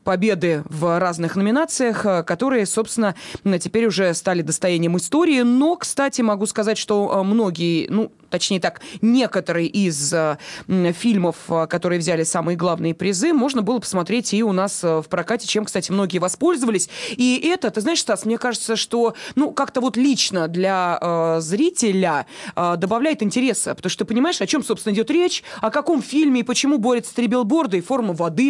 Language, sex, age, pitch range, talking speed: Russian, female, 20-39, 180-240 Hz, 165 wpm